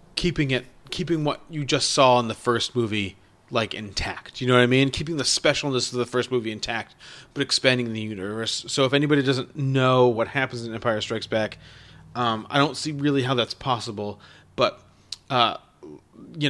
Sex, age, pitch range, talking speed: male, 30-49, 115-150 Hz, 190 wpm